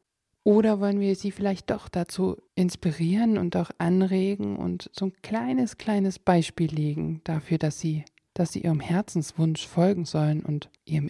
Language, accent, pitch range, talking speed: German, German, 160-215 Hz, 150 wpm